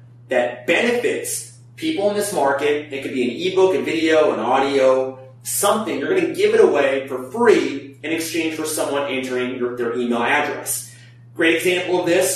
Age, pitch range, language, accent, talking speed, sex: 30-49, 125-180 Hz, English, American, 175 wpm, male